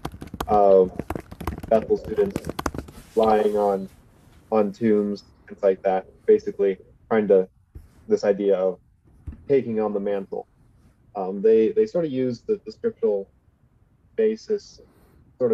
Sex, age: male, 20-39